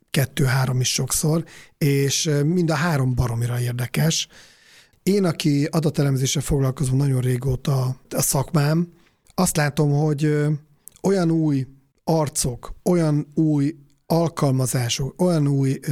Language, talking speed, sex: Hungarian, 110 wpm, male